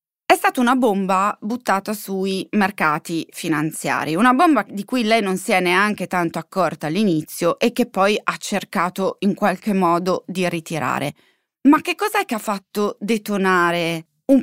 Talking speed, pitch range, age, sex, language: 160 wpm, 175-225 Hz, 20-39, female, Italian